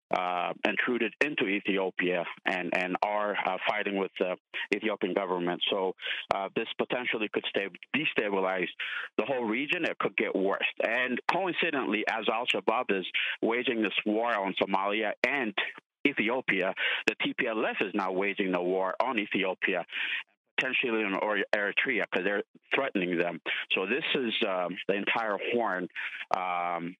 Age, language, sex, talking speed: 50-69, English, male, 140 wpm